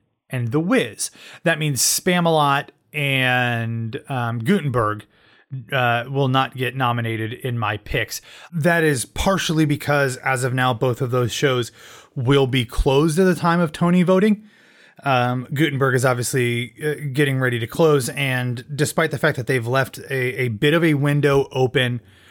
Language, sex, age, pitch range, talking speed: English, male, 30-49, 120-150 Hz, 160 wpm